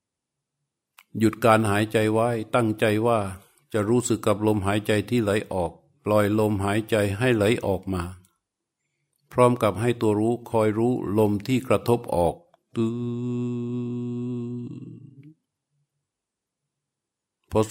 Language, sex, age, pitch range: Thai, male, 60-79, 105-120 Hz